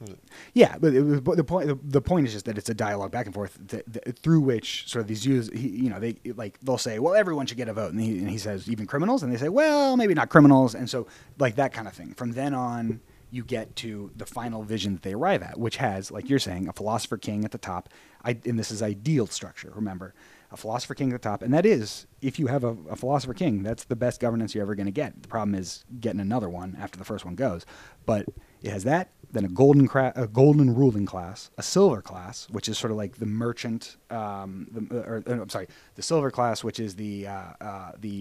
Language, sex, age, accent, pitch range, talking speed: English, male, 30-49, American, 105-130 Hz, 245 wpm